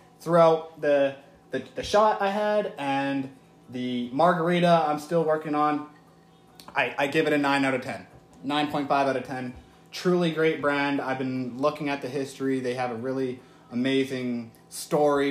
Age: 20-39